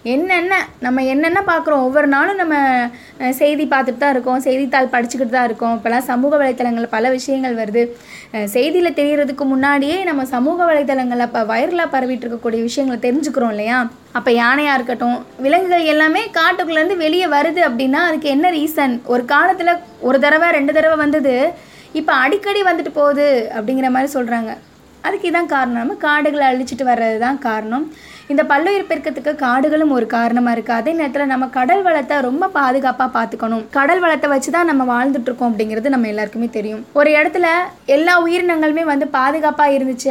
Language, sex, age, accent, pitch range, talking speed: Tamil, female, 20-39, native, 245-310 Hz, 150 wpm